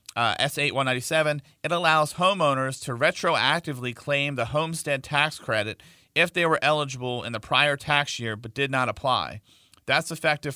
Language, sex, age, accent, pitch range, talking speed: English, male, 40-59, American, 115-145 Hz, 160 wpm